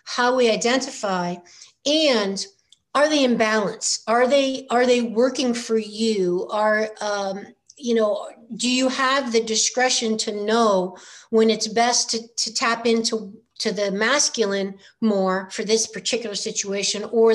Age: 50-69